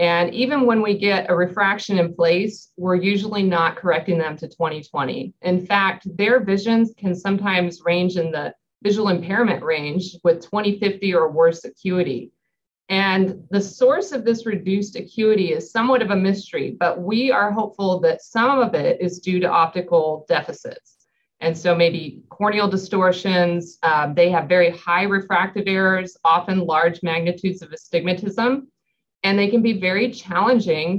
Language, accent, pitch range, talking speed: English, American, 170-205 Hz, 155 wpm